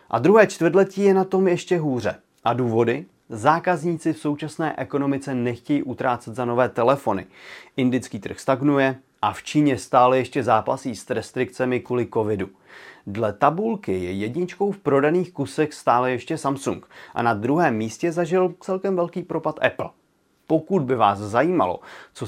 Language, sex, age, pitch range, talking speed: Czech, male, 30-49, 120-170 Hz, 150 wpm